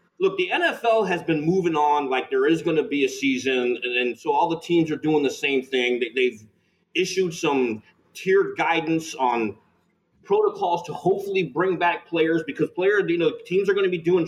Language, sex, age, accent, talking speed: English, male, 30-49, American, 205 wpm